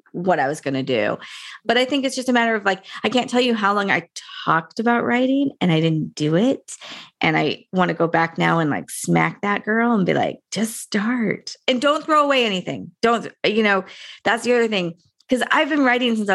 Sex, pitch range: female, 180-235 Hz